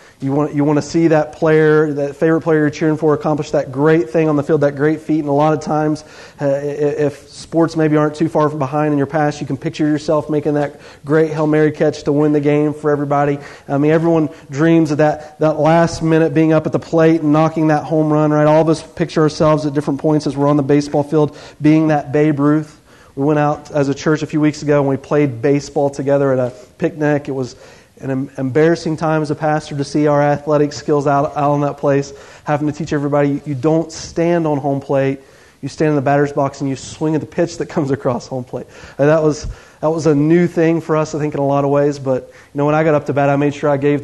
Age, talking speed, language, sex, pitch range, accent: 30-49, 260 wpm, English, male, 140-155 Hz, American